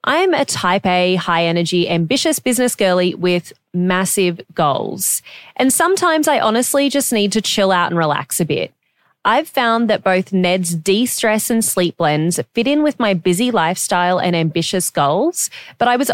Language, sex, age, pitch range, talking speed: English, female, 20-39, 175-250 Hz, 170 wpm